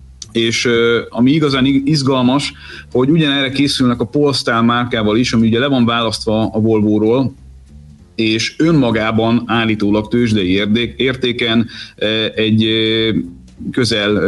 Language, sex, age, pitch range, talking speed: Hungarian, male, 30-49, 105-125 Hz, 115 wpm